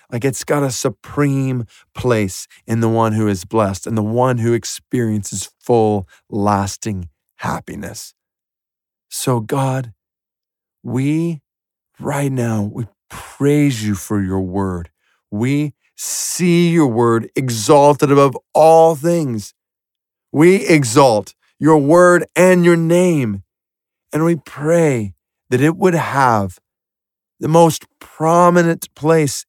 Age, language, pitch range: 40-59, English, 120-170 Hz